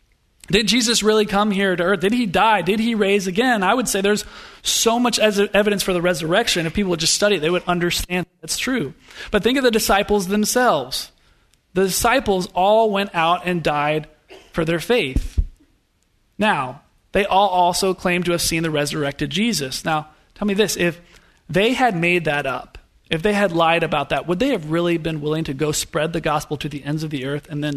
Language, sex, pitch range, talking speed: English, male, 155-200 Hz, 210 wpm